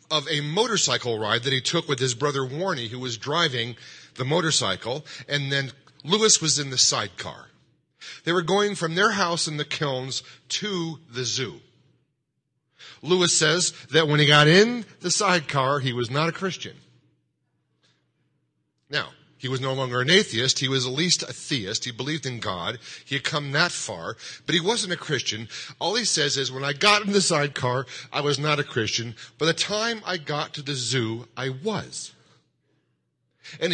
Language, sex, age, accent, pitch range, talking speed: English, male, 40-59, American, 125-170 Hz, 180 wpm